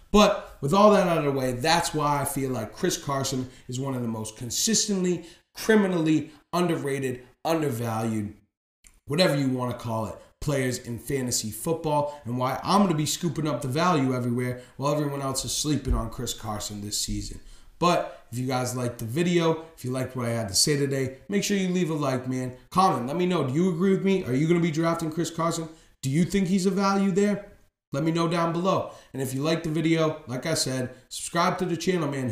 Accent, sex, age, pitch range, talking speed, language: American, male, 30-49, 125-165 Hz, 225 wpm, English